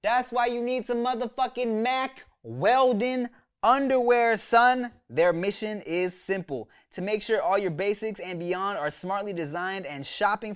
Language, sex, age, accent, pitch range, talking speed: English, male, 20-39, American, 155-220 Hz, 155 wpm